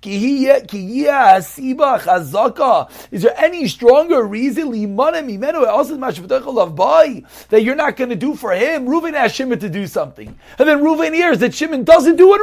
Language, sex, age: English, male, 30-49